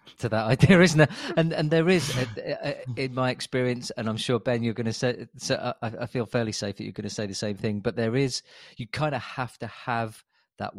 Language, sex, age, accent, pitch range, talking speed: English, male, 40-59, British, 100-120 Hz, 245 wpm